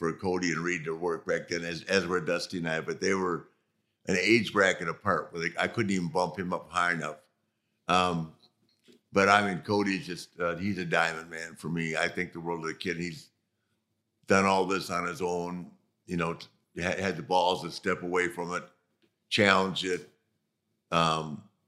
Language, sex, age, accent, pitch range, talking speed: English, male, 50-69, American, 85-110 Hz, 200 wpm